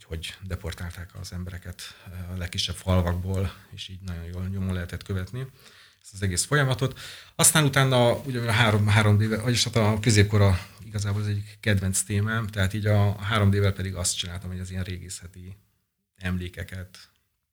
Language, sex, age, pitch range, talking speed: Hungarian, male, 30-49, 90-105 Hz, 155 wpm